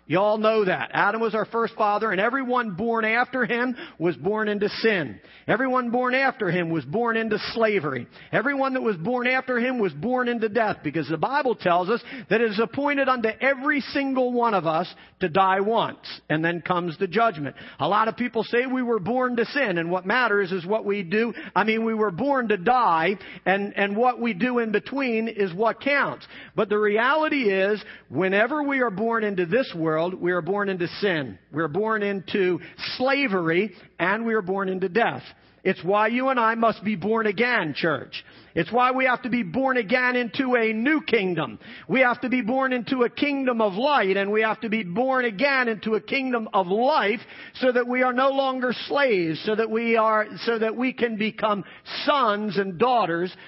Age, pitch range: 50-69, 195-250 Hz